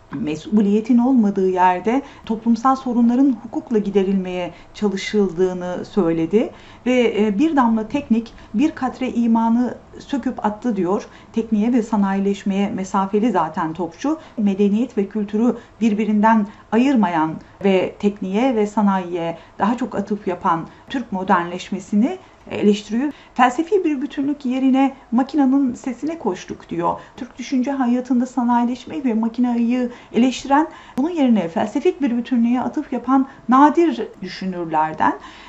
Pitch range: 210-270 Hz